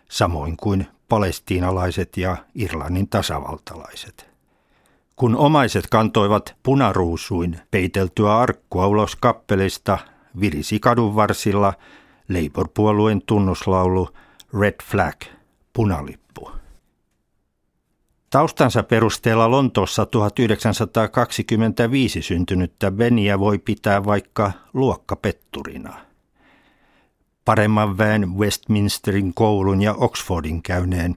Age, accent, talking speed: 60-79, native, 75 wpm